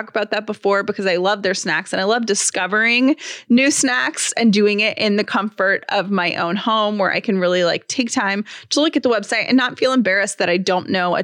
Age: 20-39